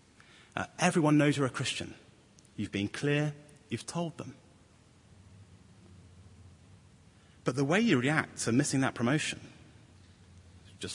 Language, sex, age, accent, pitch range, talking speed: English, male, 30-49, British, 100-145 Hz, 120 wpm